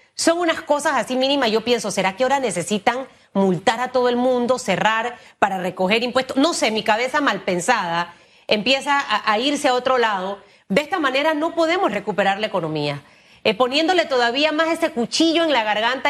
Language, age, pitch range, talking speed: Spanish, 30-49, 215-275 Hz, 185 wpm